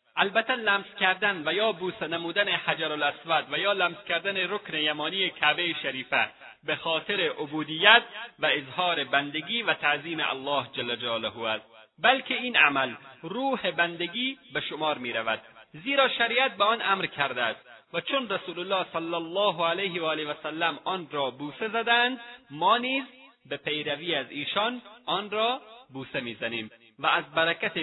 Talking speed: 155 wpm